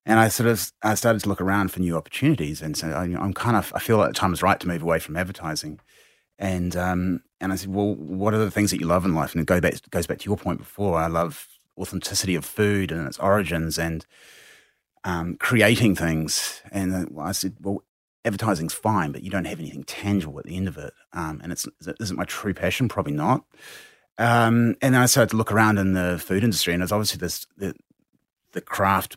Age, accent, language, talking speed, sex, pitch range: 30-49, Australian, English, 245 wpm, male, 85-105 Hz